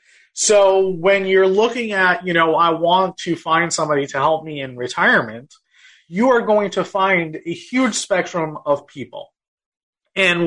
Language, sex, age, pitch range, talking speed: English, male, 30-49, 155-195 Hz, 160 wpm